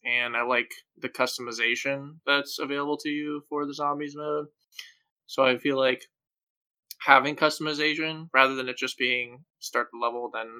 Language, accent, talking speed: English, American, 160 wpm